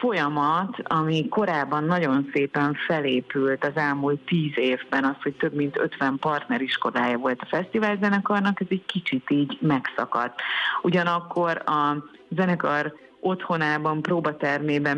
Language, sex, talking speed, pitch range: Hungarian, female, 115 wpm, 145-165 Hz